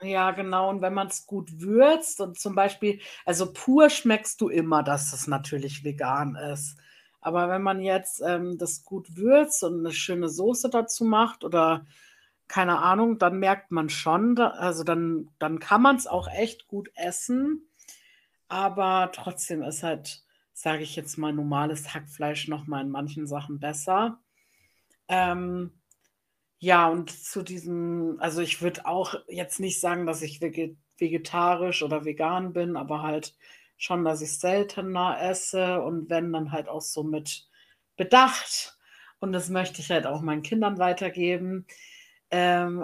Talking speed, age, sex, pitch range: 160 wpm, 50-69, female, 160-200 Hz